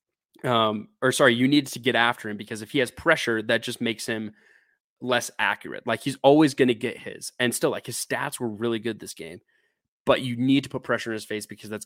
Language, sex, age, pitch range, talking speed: English, male, 20-39, 110-130 Hz, 245 wpm